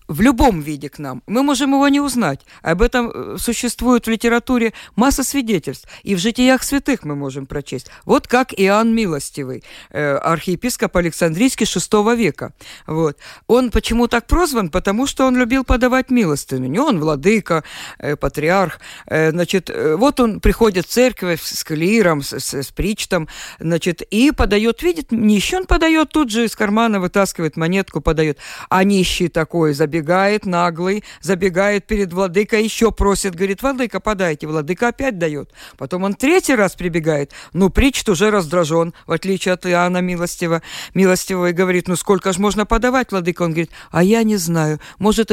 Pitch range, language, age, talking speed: 165-235 Hz, Russian, 50-69, 160 wpm